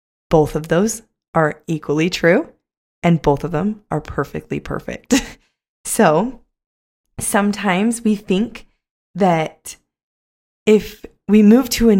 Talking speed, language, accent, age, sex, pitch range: 115 wpm, English, American, 20-39, female, 165-225 Hz